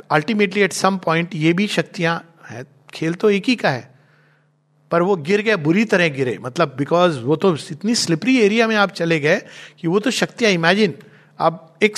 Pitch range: 155-215 Hz